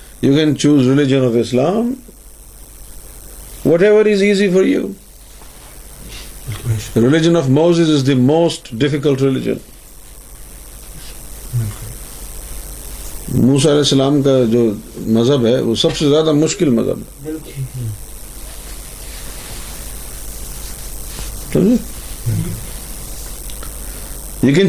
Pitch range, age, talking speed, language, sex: 120-195 Hz, 50-69, 50 wpm, Urdu, male